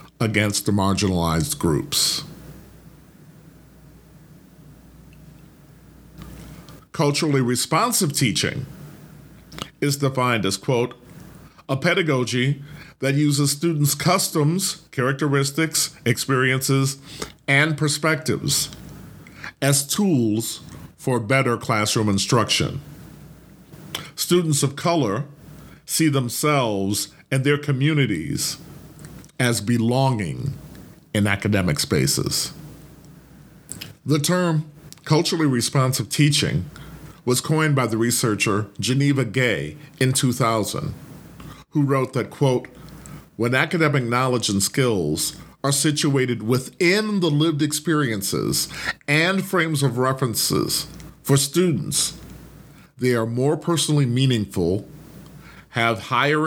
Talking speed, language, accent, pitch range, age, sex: 85 wpm, English, American, 125-155 Hz, 50-69, male